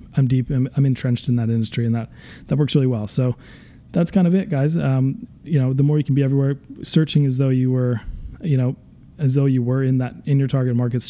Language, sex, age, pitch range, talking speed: English, male, 20-39, 120-135 Hz, 245 wpm